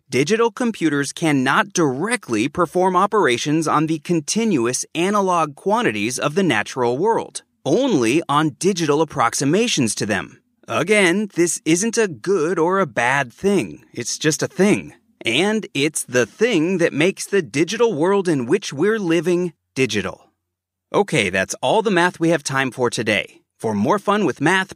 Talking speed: 155 wpm